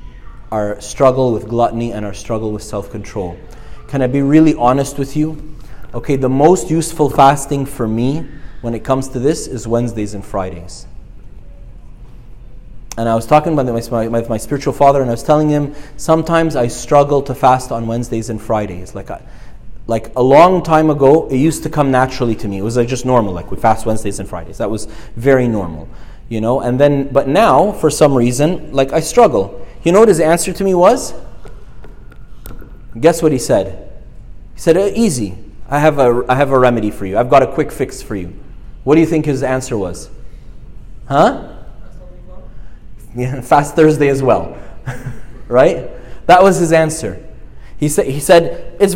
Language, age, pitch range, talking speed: English, 30-49, 115-155 Hz, 185 wpm